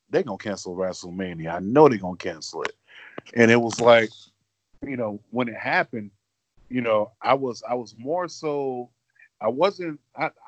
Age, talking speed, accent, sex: 30-49, 165 wpm, American, male